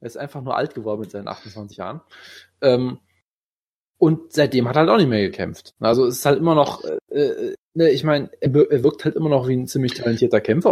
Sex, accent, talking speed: male, German, 225 wpm